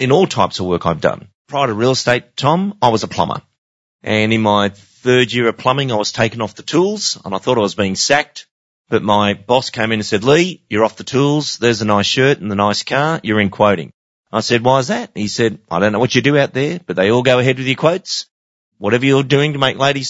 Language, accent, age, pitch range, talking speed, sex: English, Australian, 30-49, 100-125 Hz, 265 wpm, male